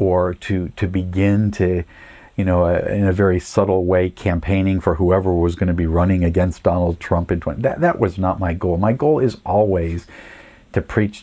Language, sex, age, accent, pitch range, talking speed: English, male, 50-69, American, 90-110 Hz, 180 wpm